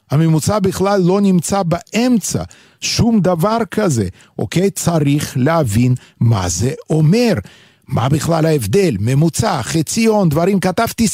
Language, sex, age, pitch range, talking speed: Hebrew, male, 50-69, 130-190 Hz, 115 wpm